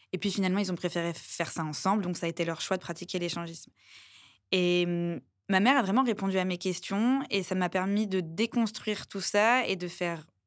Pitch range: 180-210 Hz